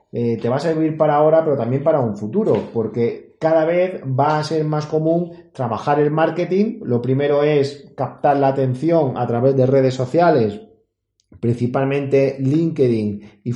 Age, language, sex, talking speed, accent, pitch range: 30-49, Spanish, male, 165 wpm, Spanish, 125-155 Hz